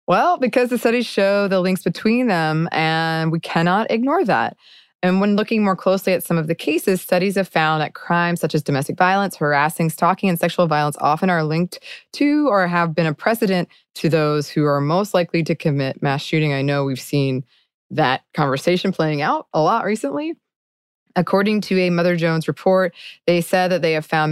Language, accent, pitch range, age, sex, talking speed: English, American, 155-190 Hz, 20-39, female, 195 wpm